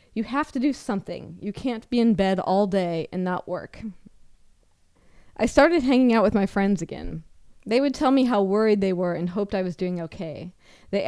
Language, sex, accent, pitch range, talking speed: English, female, American, 190-230 Hz, 205 wpm